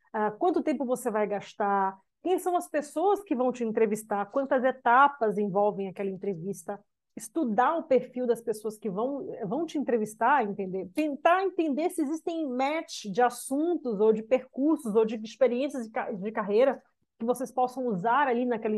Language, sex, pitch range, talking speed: Portuguese, female, 225-285 Hz, 165 wpm